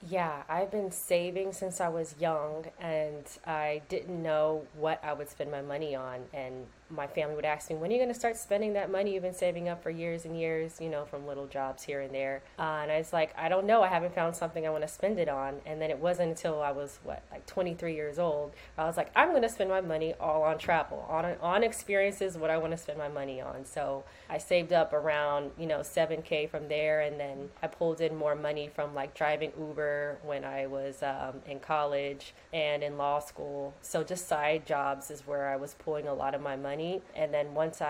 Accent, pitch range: American, 145-165 Hz